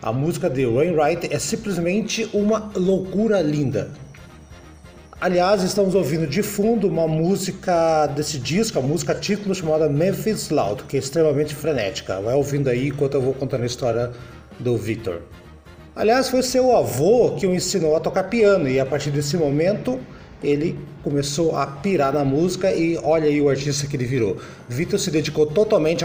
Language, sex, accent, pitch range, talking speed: Portuguese, male, Brazilian, 145-190 Hz, 170 wpm